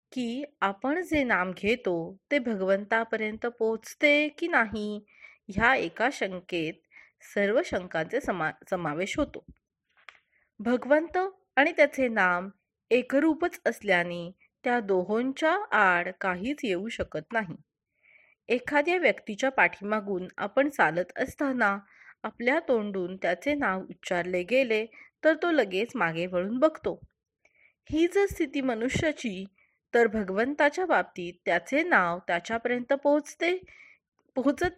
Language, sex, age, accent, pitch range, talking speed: Marathi, female, 30-49, native, 195-290 Hz, 105 wpm